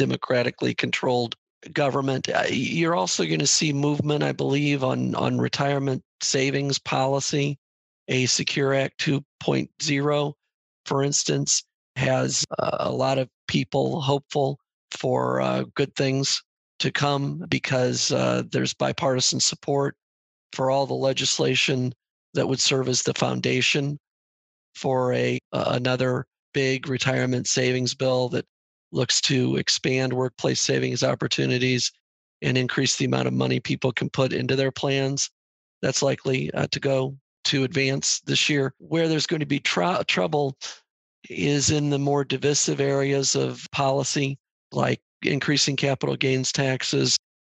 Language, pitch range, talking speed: English, 125-140 Hz, 130 wpm